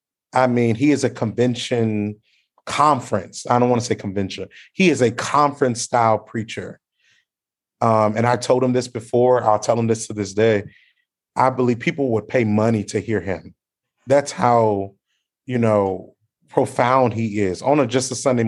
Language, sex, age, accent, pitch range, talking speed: English, male, 30-49, American, 120-175 Hz, 170 wpm